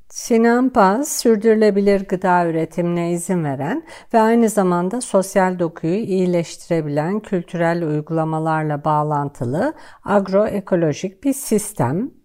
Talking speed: 90 wpm